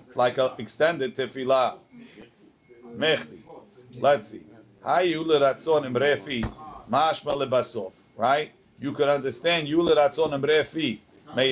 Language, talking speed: English, 55 wpm